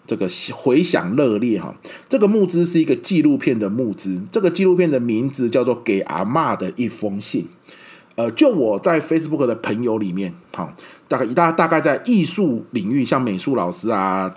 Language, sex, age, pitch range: Chinese, male, 30-49, 105-175 Hz